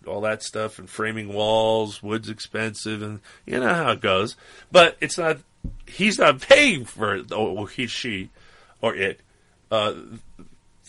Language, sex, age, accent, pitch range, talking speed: English, male, 40-59, American, 95-120 Hz, 150 wpm